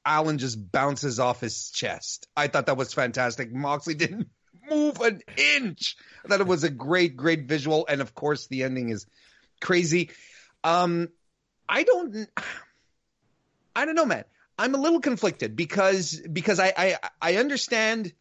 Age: 30-49